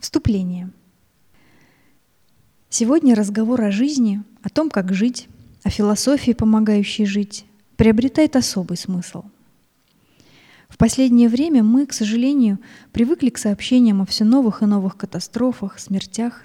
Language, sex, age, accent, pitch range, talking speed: Russian, female, 20-39, native, 200-245 Hz, 115 wpm